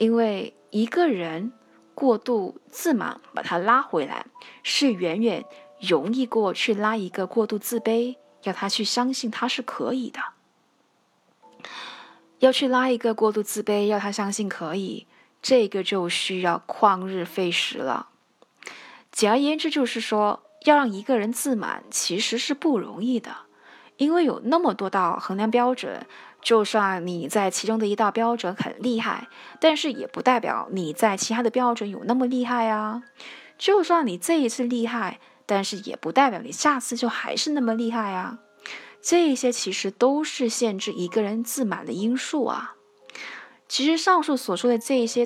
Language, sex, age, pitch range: Chinese, female, 20-39, 205-255 Hz